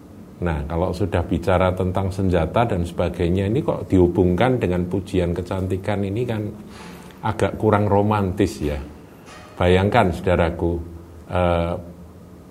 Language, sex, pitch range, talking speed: Indonesian, male, 85-105 Hz, 110 wpm